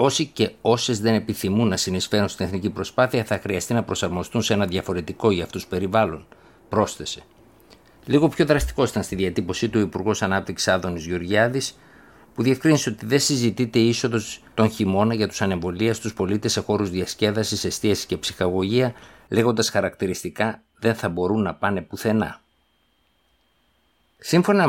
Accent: native